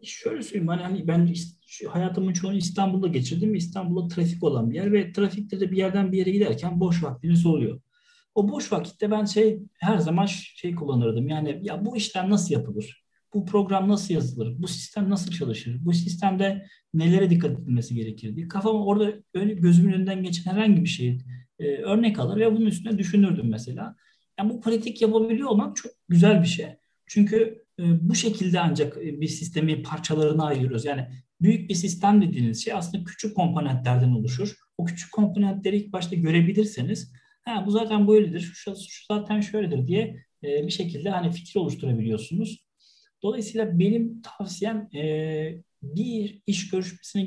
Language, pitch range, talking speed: Turkish, 160-205 Hz, 155 wpm